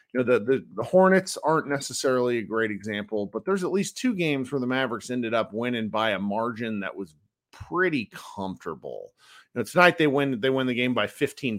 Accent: American